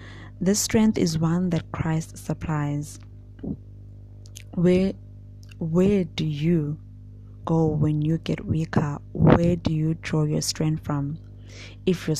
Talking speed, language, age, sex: 125 wpm, English, 20-39, female